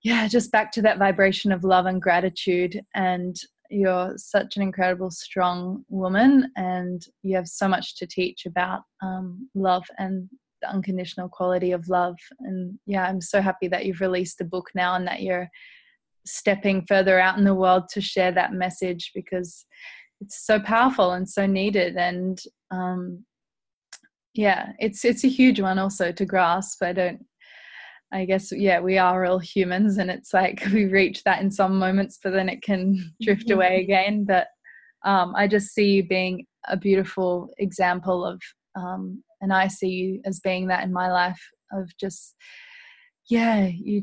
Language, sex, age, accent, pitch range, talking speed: English, female, 20-39, Australian, 180-200 Hz, 170 wpm